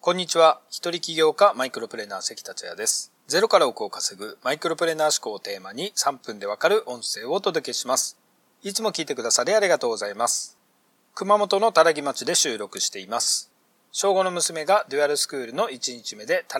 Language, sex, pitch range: Japanese, male, 155-230 Hz